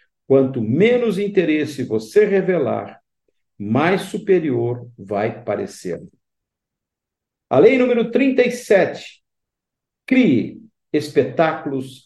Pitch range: 120-200 Hz